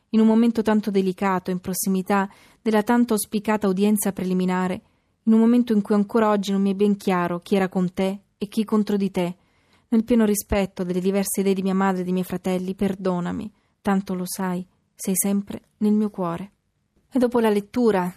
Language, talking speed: Italian, 195 wpm